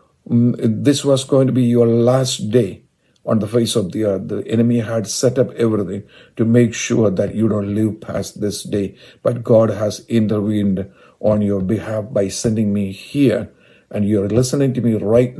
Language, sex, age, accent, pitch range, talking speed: English, male, 50-69, Indian, 105-130 Hz, 185 wpm